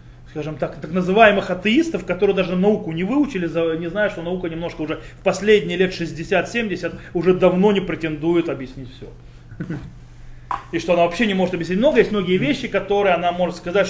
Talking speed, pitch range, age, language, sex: 175 wpm, 145-215 Hz, 30-49, Russian, male